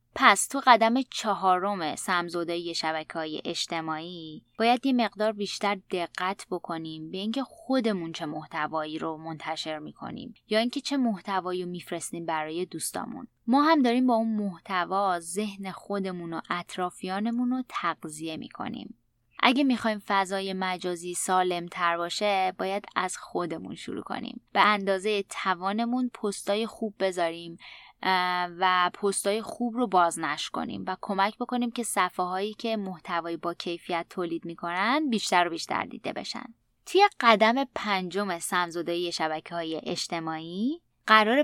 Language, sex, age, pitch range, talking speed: Persian, female, 20-39, 170-230 Hz, 130 wpm